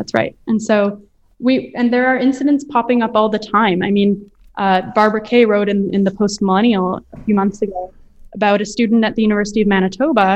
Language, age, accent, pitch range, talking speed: English, 10-29, American, 195-230 Hz, 215 wpm